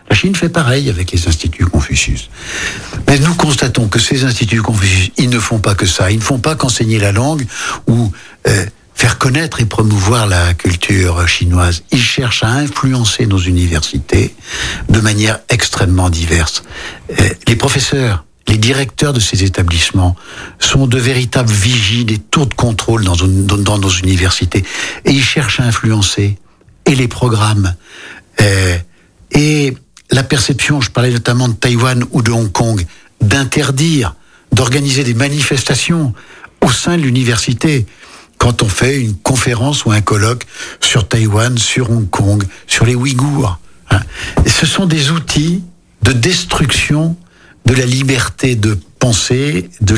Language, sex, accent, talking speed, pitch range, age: French, male, French, 145 wpm, 100-135 Hz, 60-79